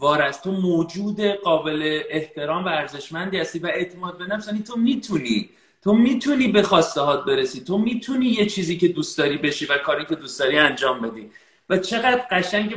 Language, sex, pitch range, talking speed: Persian, male, 175-210 Hz, 175 wpm